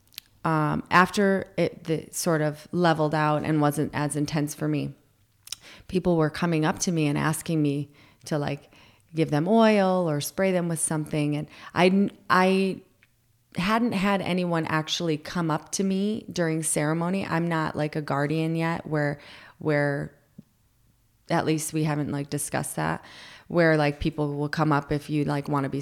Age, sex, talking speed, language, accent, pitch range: 30-49, female, 165 wpm, English, American, 145-165 Hz